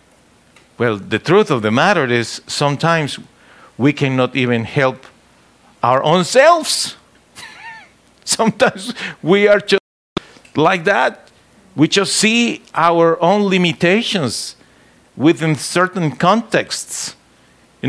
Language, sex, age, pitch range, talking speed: English, male, 50-69, 155-230 Hz, 105 wpm